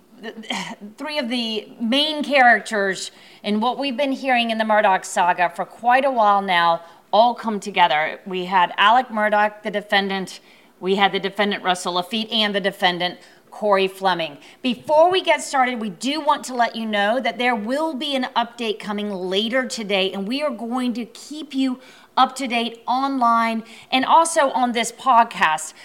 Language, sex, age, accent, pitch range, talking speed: English, female, 30-49, American, 190-240 Hz, 170 wpm